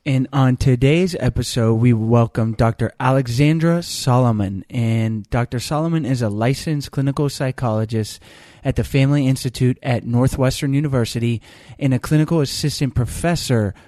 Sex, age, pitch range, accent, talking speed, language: male, 20-39, 115-135 Hz, American, 125 wpm, English